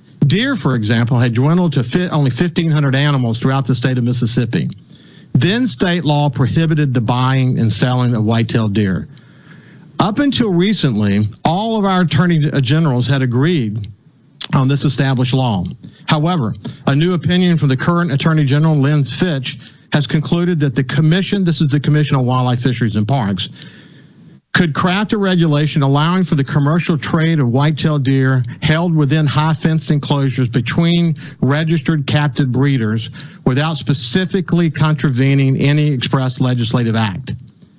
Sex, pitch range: male, 130-160 Hz